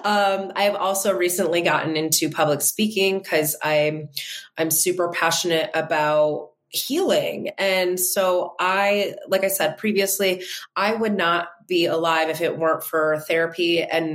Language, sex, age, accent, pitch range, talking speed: English, female, 20-39, American, 165-200 Hz, 145 wpm